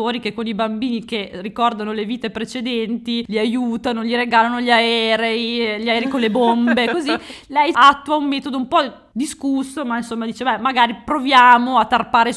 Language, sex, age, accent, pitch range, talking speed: Italian, female, 20-39, native, 210-255 Hz, 175 wpm